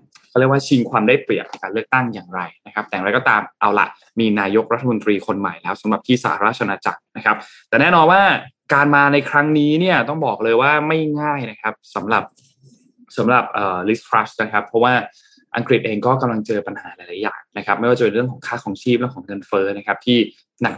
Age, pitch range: 20-39, 110-145 Hz